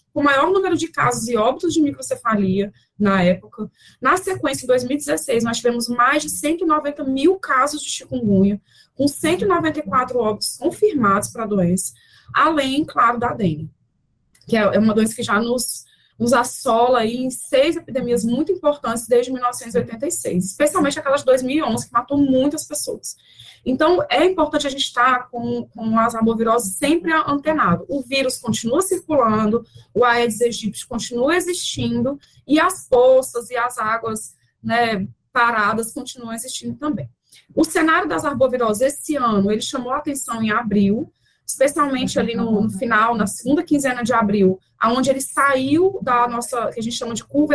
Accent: Brazilian